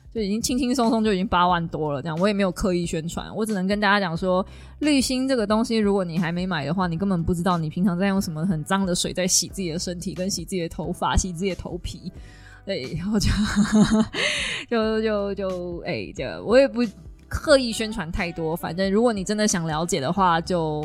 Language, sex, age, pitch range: Chinese, female, 20-39, 180-230 Hz